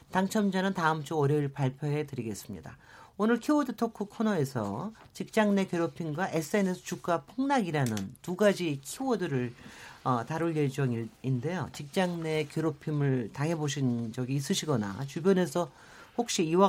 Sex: male